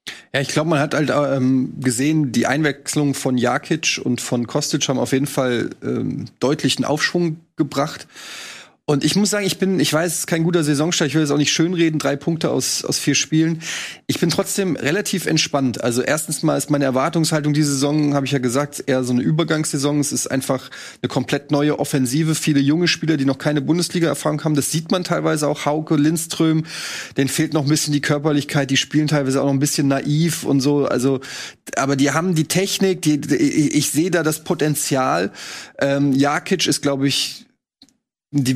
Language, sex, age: German, male, 30-49